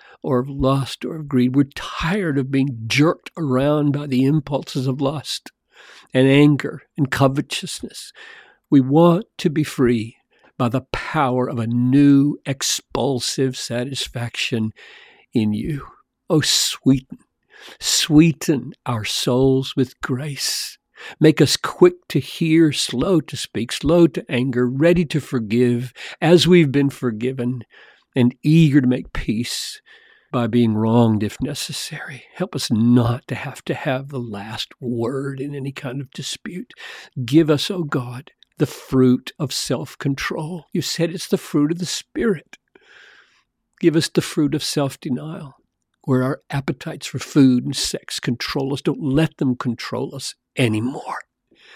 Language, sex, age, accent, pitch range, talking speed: English, male, 50-69, American, 125-155 Hz, 145 wpm